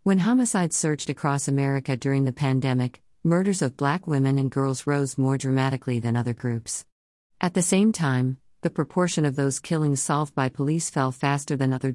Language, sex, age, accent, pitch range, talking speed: English, female, 50-69, American, 130-155 Hz, 180 wpm